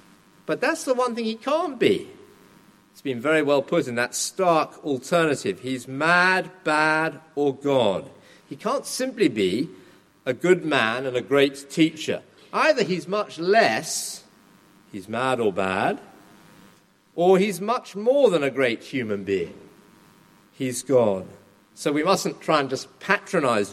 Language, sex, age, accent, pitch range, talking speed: English, male, 50-69, British, 120-185 Hz, 150 wpm